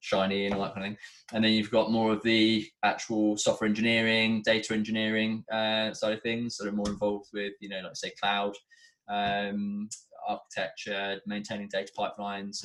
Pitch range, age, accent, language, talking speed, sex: 95-110 Hz, 20-39, British, English, 185 wpm, male